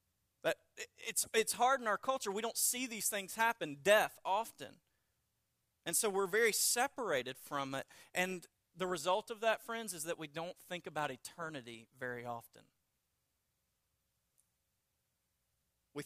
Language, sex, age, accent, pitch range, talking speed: English, male, 40-59, American, 140-175 Hz, 140 wpm